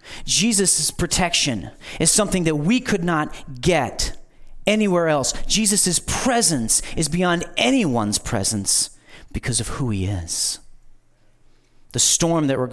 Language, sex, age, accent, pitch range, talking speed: English, male, 40-59, American, 125-180 Hz, 125 wpm